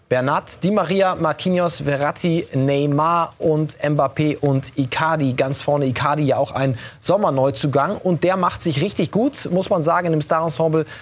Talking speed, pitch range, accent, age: 150 wpm, 130-155 Hz, German, 20-39